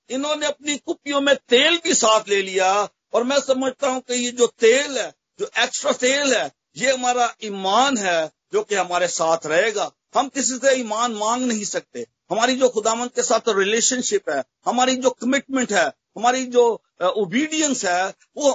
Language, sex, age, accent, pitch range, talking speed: Hindi, male, 50-69, native, 180-255 Hz, 175 wpm